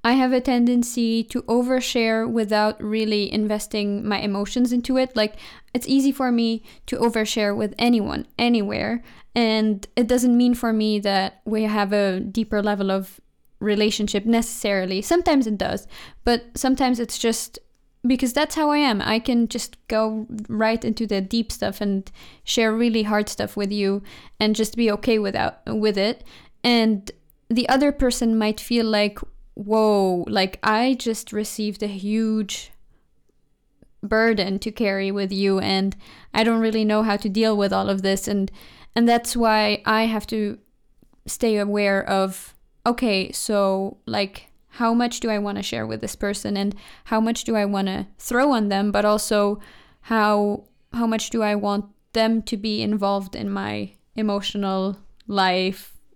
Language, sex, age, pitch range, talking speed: English, female, 20-39, 205-235 Hz, 165 wpm